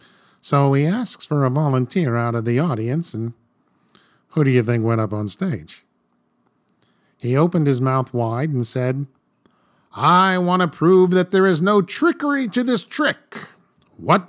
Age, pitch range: 50-69, 115-150 Hz